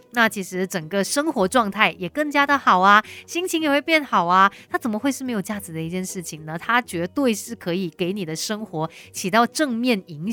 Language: Chinese